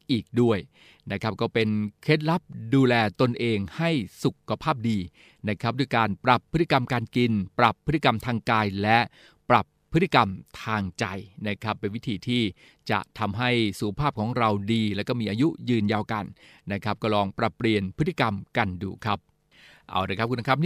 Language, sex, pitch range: Thai, male, 105-125 Hz